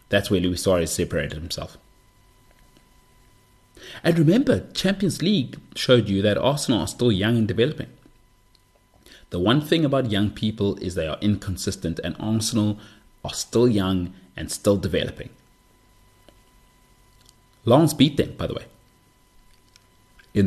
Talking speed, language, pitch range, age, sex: 130 wpm, English, 100-125 Hz, 30-49, male